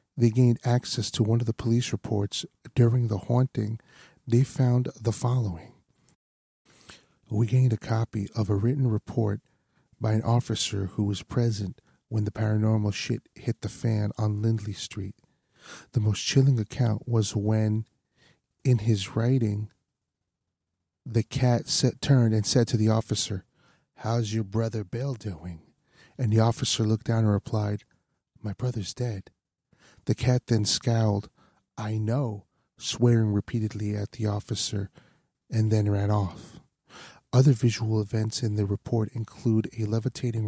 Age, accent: 40-59, American